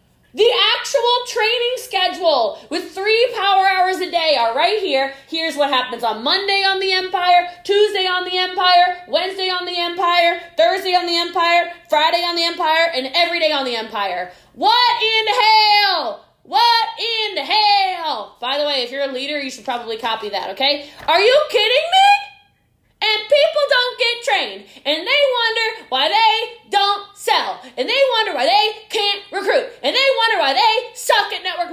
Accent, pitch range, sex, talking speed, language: American, 315-435 Hz, female, 175 wpm, English